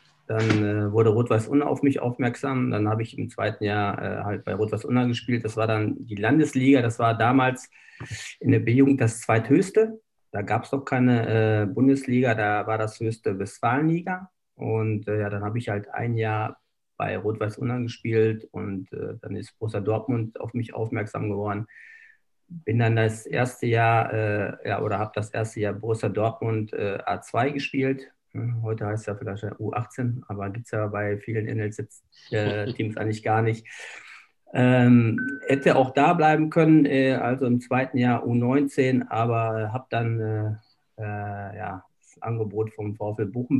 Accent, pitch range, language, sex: German, 105-130 Hz, German, male